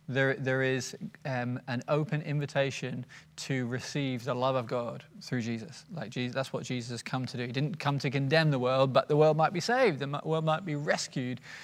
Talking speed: 215 wpm